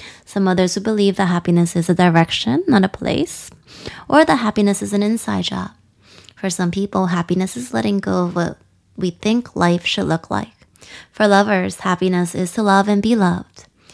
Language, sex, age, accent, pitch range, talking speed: English, female, 20-39, American, 165-205 Hz, 185 wpm